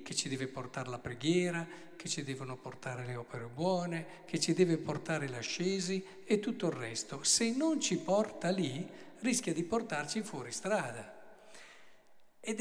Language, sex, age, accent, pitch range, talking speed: Italian, male, 50-69, native, 155-225 Hz, 155 wpm